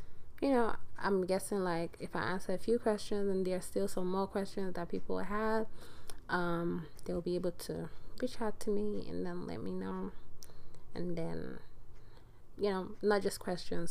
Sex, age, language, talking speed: female, 20-39, English, 180 wpm